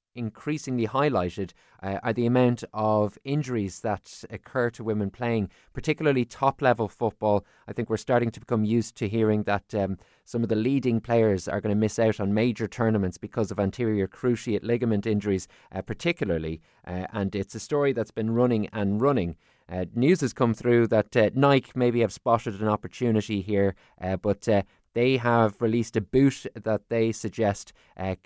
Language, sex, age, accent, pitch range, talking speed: English, male, 20-39, Irish, 100-115 Hz, 180 wpm